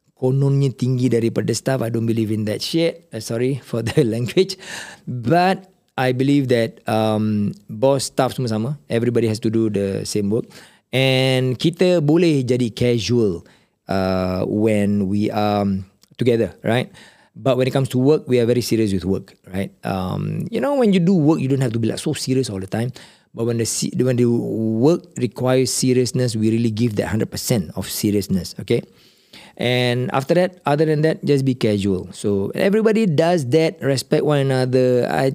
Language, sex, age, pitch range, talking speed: Malay, male, 40-59, 110-145 Hz, 180 wpm